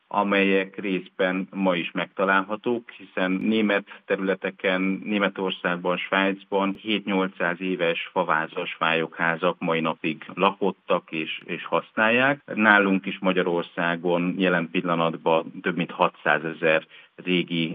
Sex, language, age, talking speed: male, Hungarian, 50-69, 100 wpm